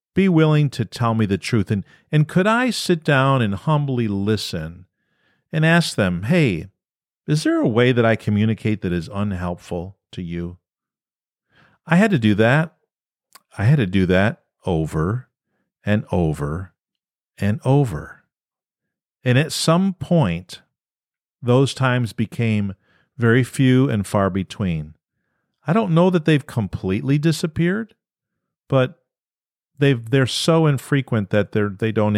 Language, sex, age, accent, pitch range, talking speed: English, male, 50-69, American, 105-150 Hz, 140 wpm